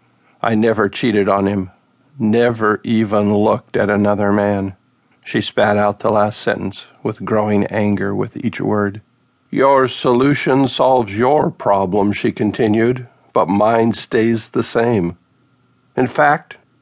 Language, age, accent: English, 50-69, American